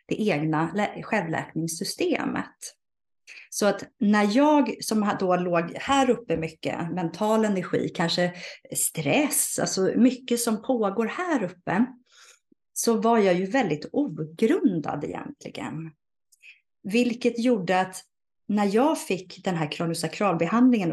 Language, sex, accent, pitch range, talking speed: Swedish, female, native, 175-235 Hz, 110 wpm